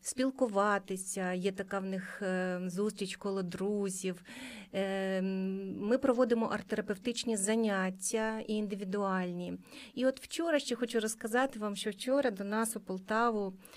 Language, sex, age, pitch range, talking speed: Ukrainian, female, 30-49, 200-240 Hz, 120 wpm